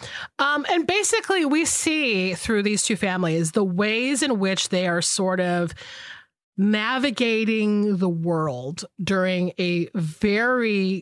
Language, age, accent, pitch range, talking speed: English, 30-49, American, 185-255 Hz, 125 wpm